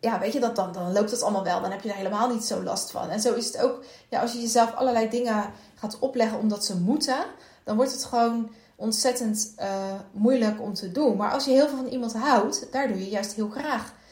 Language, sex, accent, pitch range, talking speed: English, female, Dutch, 210-265 Hz, 250 wpm